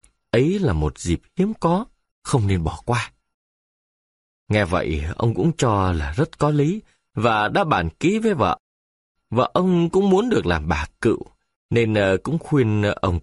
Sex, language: male, Vietnamese